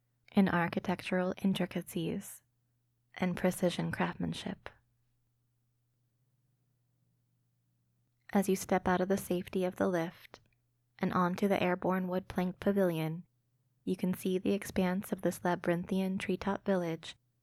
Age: 20-39